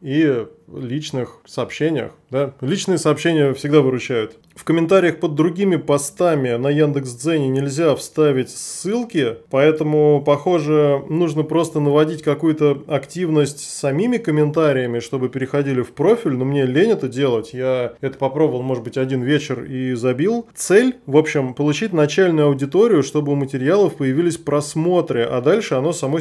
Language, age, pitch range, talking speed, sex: Russian, 20-39, 135-160 Hz, 140 wpm, male